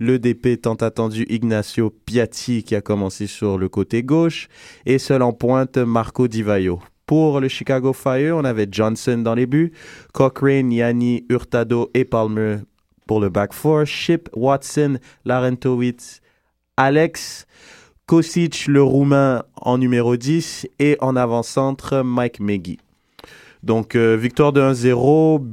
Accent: French